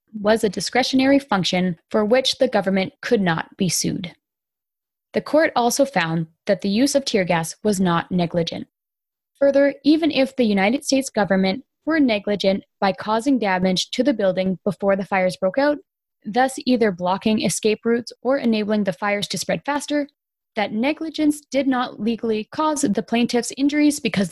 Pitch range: 185-270 Hz